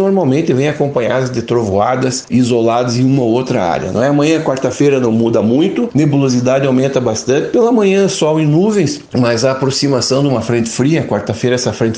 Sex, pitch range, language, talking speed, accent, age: male, 120-150 Hz, Portuguese, 175 wpm, Brazilian, 60-79